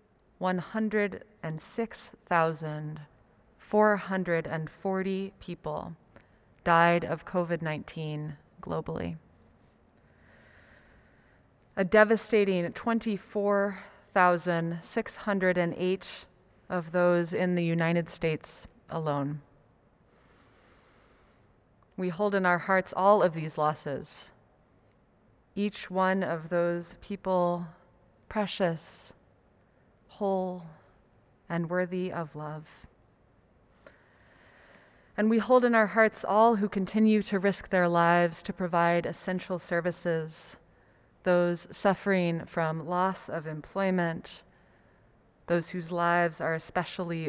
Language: English